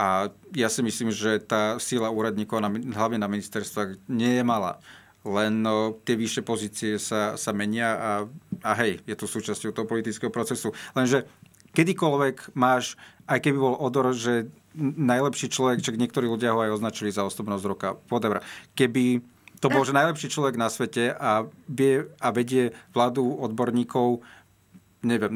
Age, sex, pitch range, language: 40-59, male, 105-130 Hz, Slovak